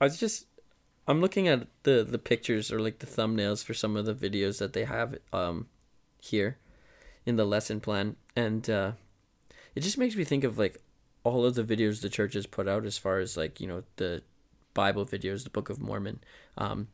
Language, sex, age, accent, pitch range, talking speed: English, male, 20-39, American, 95-110 Hz, 210 wpm